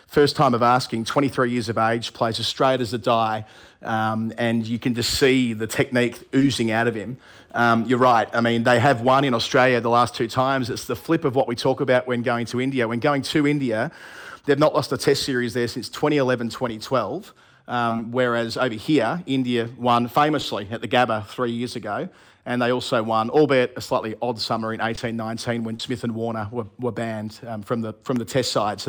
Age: 40-59